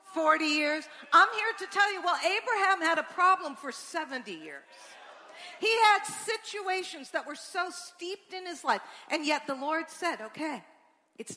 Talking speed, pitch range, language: 170 wpm, 235-325 Hz, English